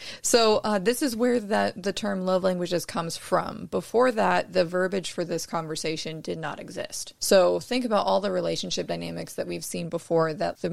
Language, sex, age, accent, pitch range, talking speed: English, female, 20-39, American, 160-215 Hz, 195 wpm